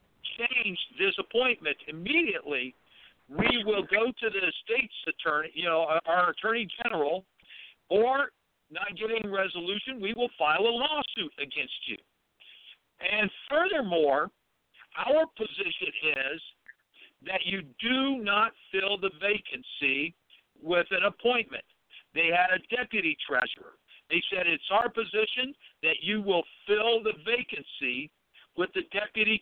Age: 60-79